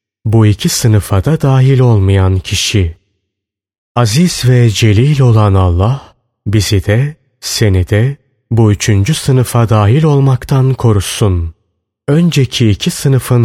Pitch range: 100-130 Hz